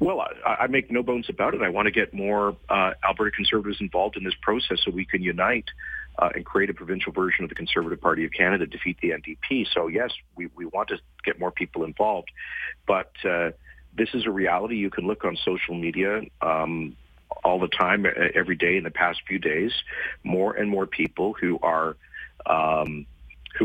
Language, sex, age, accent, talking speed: English, male, 40-59, American, 200 wpm